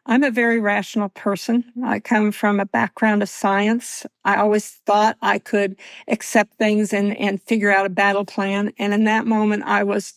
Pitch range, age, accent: 200-235 Hz, 50-69, American